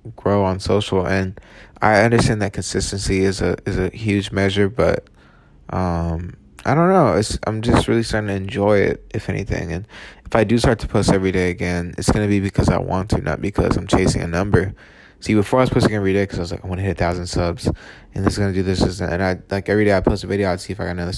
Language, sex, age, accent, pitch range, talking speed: English, male, 20-39, American, 95-105 Hz, 265 wpm